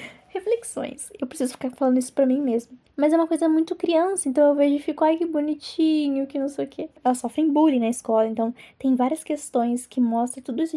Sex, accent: female, Brazilian